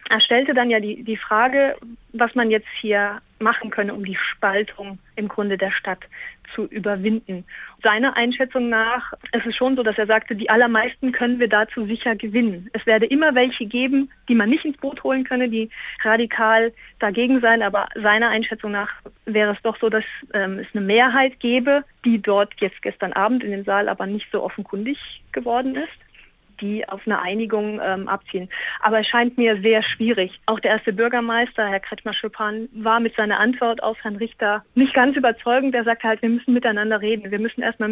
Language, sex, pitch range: German, female, 210-240 Hz